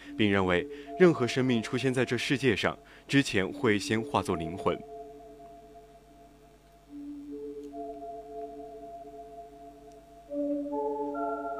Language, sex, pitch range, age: Chinese, male, 100-145 Hz, 20-39